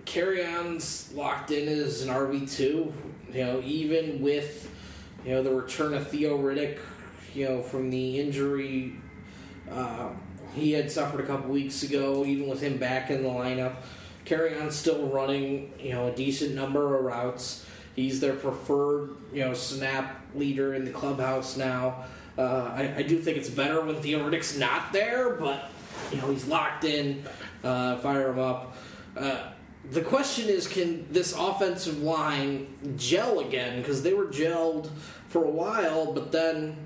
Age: 20-39